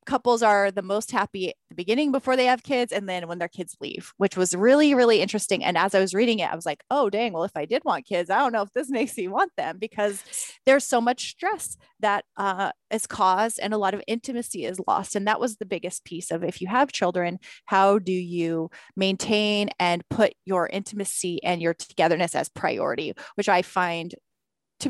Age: 20-39